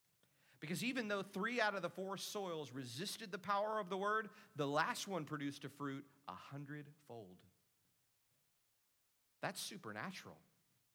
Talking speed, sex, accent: 135 wpm, male, American